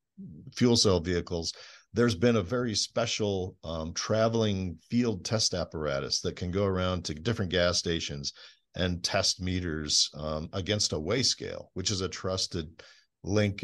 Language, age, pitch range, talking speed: English, 50-69, 85-105 Hz, 150 wpm